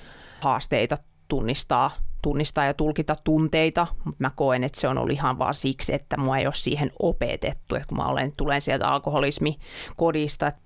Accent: native